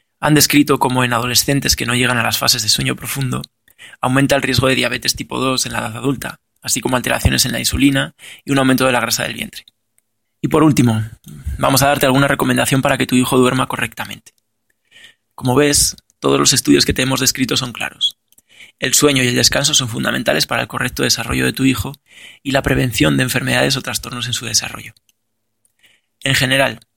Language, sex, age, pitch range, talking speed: Spanish, male, 20-39, 115-135 Hz, 200 wpm